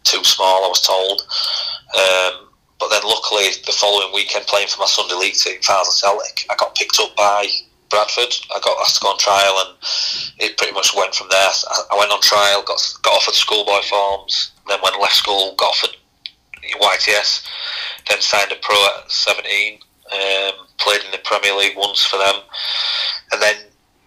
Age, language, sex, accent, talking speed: 30-49, English, male, British, 185 wpm